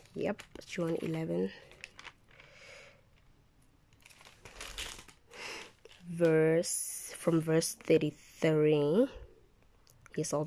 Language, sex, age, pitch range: English, female, 20-39, 150-175 Hz